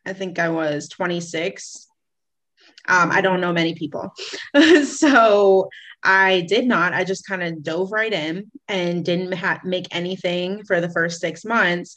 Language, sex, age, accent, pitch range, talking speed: English, female, 20-39, American, 165-200 Hz, 155 wpm